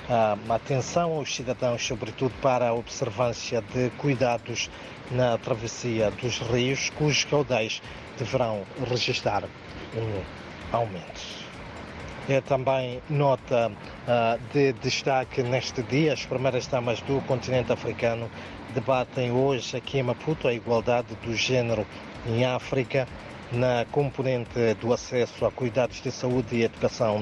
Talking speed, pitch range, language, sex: 115 wpm, 115-130 Hz, Portuguese, male